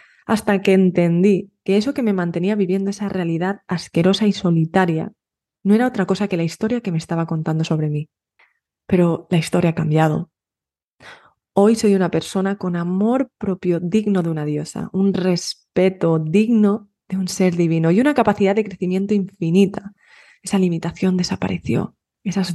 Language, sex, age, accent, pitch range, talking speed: Spanish, female, 20-39, Spanish, 170-205 Hz, 160 wpm